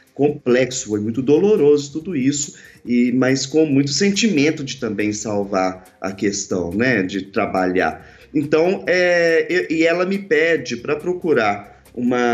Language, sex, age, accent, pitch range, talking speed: Portuguese, male, 30-49, Brazilian, 125-190 Hz, 140 wpm